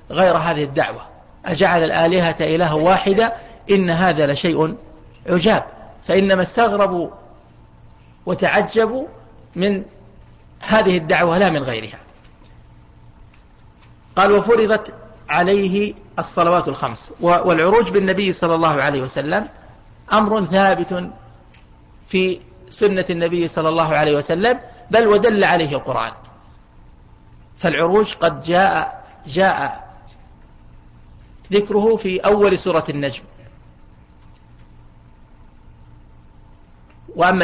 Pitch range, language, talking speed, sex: 145-195 Hz, Arabic, 85 wpm, male